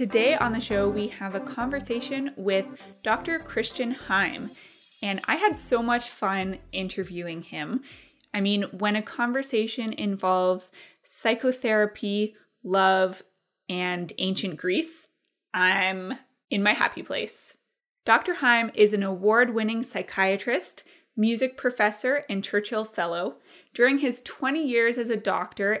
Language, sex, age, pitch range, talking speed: English, female, 20-39, 195-245 Hz, 130 wpm